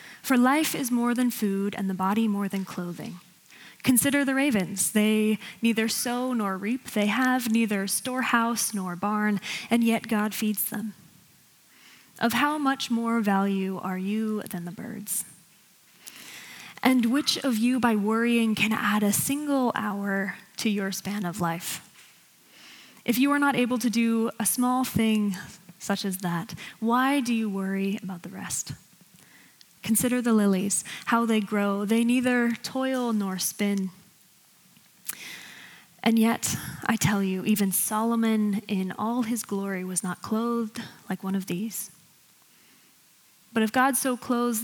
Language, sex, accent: English, female, American